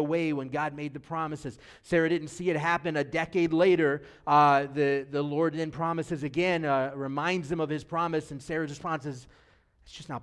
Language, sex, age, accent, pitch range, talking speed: English, male, 30-49, American, 140-170 Hz, 200 wpm